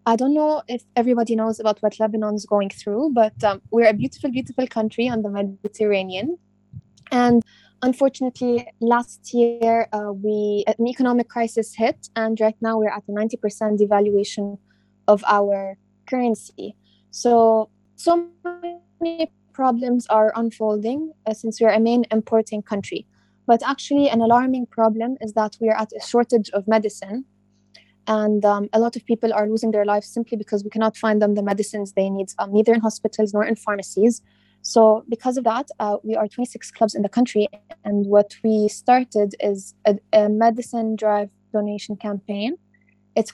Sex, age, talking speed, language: female, 20-39, 170 wpm, Indonesian